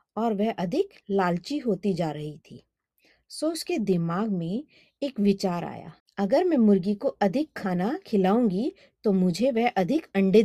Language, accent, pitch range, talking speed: Hindi, native, 190-255 Hz, 155 wpm